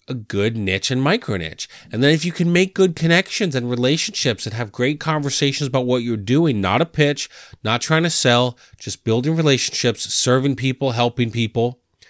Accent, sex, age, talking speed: American, male, 30-49, 190 wpm